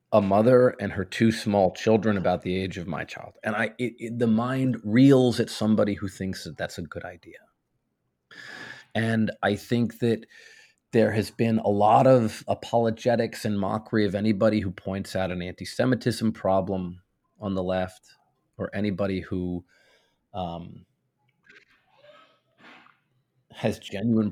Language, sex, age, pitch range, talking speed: English, male, 30-49, 95-115 Hz, 145 wpm